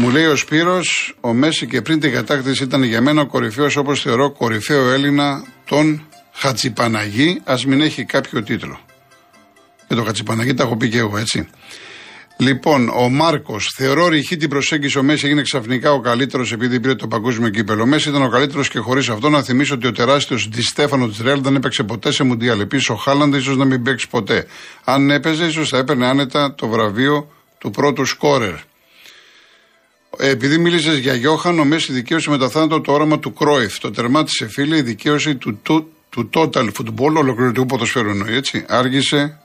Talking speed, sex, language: 180 wpm, male, Greek